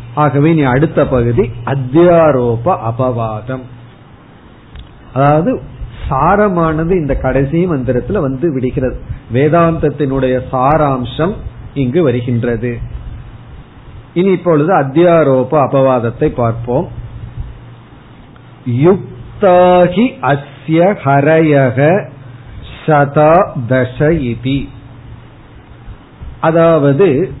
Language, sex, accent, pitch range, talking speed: Tamil, male, native, 125-165 Hz, 50 wpm